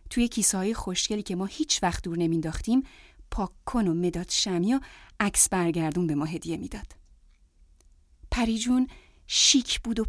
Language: Persian